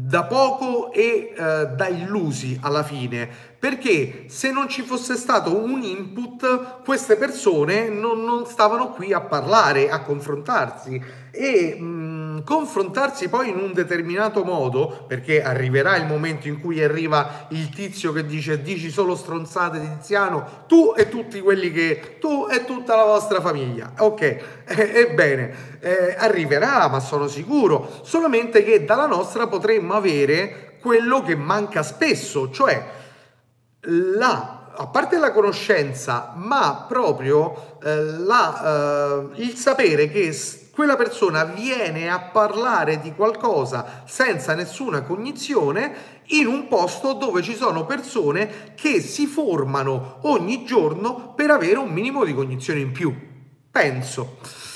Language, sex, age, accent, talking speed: Italian, male, 30-49, native, 135 wpm